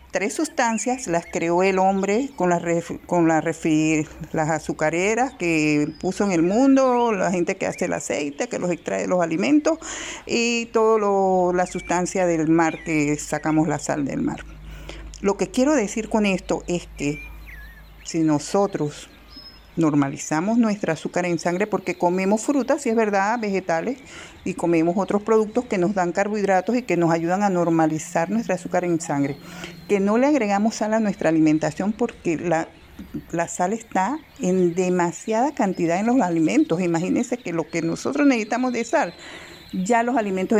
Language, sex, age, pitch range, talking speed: Spanish, female, 50-69, 165-220 Hz, 165 wpm